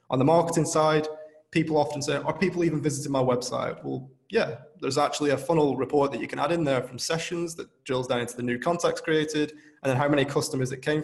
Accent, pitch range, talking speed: British, 130-160 Hz, 235 wpm